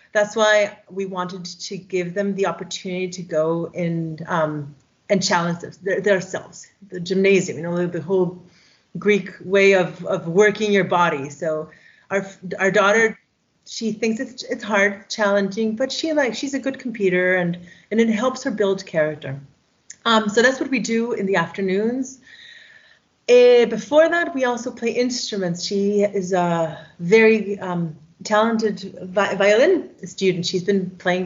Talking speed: 155 wpm